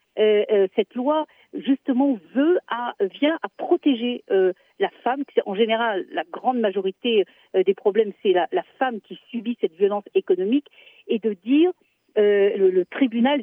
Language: French